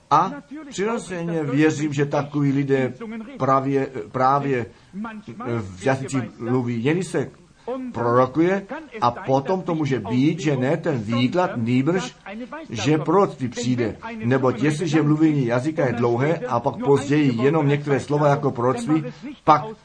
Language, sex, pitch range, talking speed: Czech, male, 130-170 Hz, 125 wpm